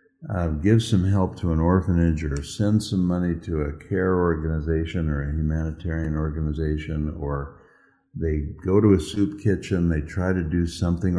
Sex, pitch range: male, 80-100 Hz